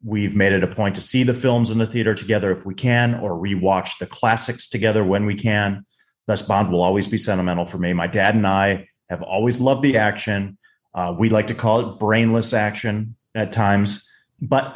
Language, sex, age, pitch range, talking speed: English, male, 30-49, 95-125 Hz, 210 wpm